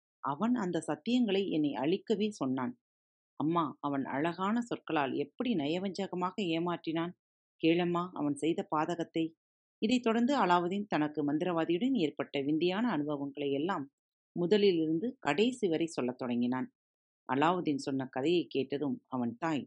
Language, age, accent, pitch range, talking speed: Tamil, 40-59, native, 140-200 Hz, 115 wpm